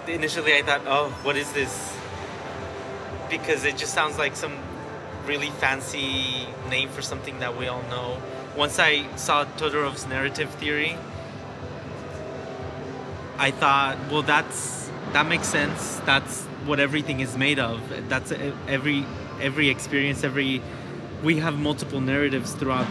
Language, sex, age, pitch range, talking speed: English, male, 20-39, 130-145 Hz, 135 wpm